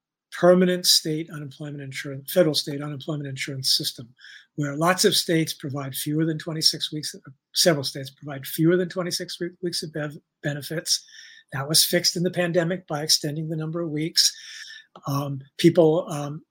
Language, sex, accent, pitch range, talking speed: English, male, American, 145-175 Hz, 155 wpm